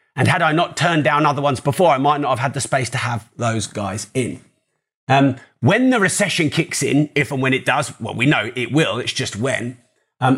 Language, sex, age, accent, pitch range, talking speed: English, male, 30-49, British, 120-150 Hz, 235 wpm